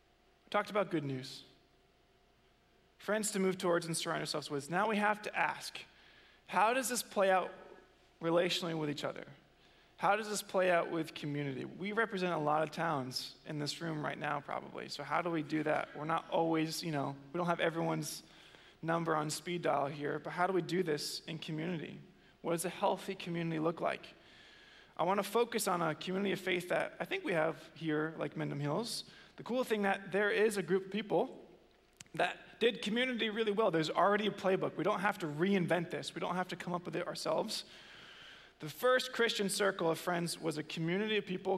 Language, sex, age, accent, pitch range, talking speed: English, male, 20-39, American, 160-195 Hz, 205 wpm